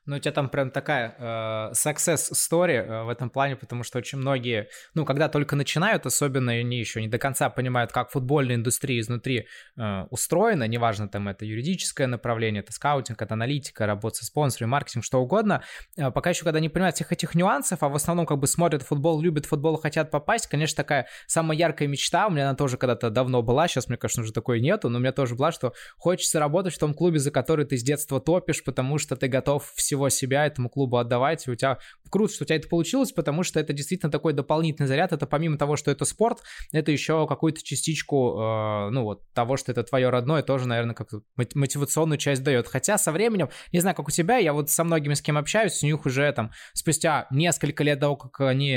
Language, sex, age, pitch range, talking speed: Russian, male, 20-39, 125-160 Hz, 220 wpm